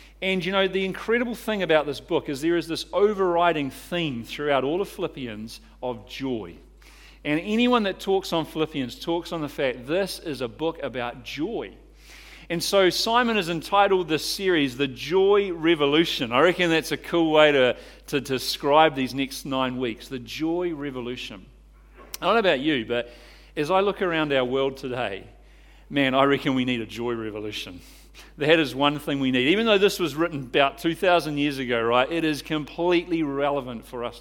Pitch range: 135-185 Hz